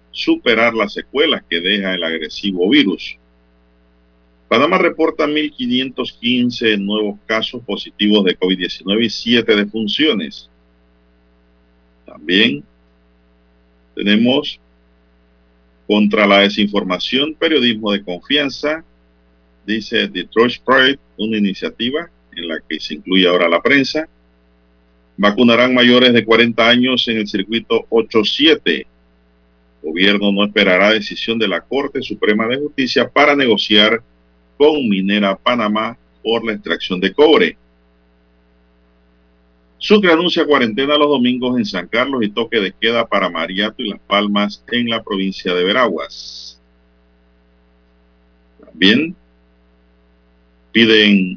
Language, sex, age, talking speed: Spanish, male, 50-69, 110 wpm